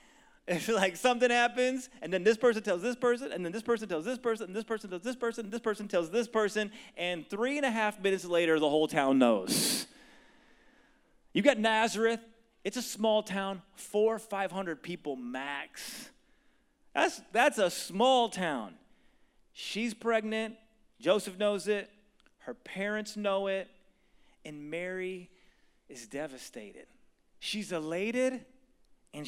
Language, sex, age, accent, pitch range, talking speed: English, male, 30-49, American, 165-235 Hz, 165 wpm